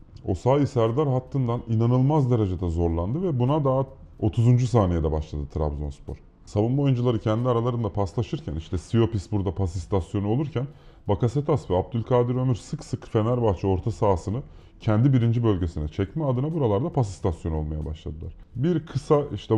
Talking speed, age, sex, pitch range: 140 wpm, 30-49, male, 95-130 Hz